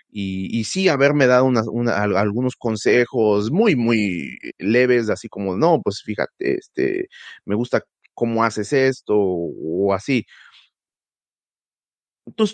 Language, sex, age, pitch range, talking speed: Spanish, male, 30-49, 105-145 Hz, 110 wpm